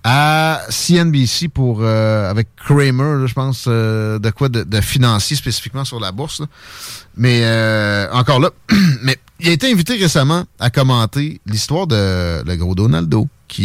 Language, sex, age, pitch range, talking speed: French, male, 30-49, 110-150 Hz, 165 wpm